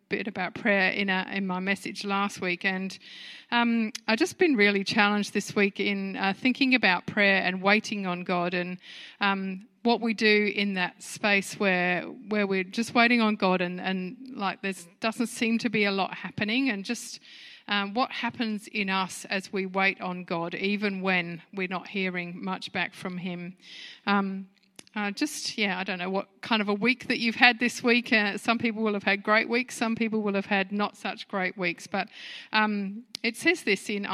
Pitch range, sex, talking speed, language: 185-225 Hz, female, 200 wpm, English